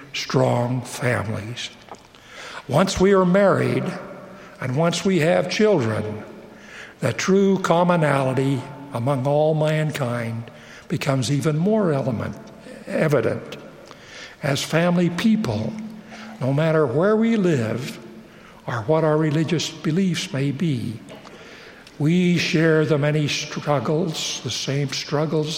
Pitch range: 140-175 Hz